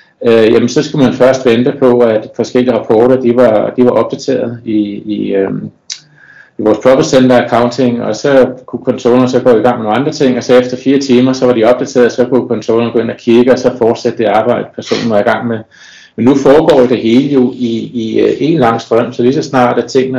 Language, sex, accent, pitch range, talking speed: Danish, male, native, 110-125 Hz, 215 wpm